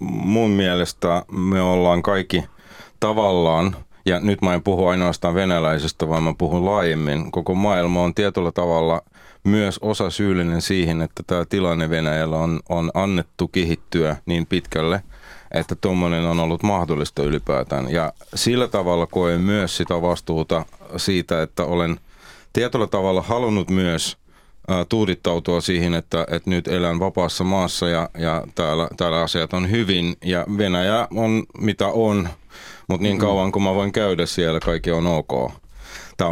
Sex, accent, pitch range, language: male, native, 85-95 Hz, Finnish